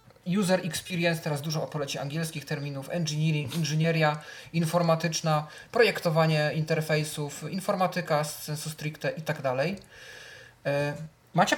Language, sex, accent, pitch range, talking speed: Polish, male, native, 145-175 Hz, 95 wpm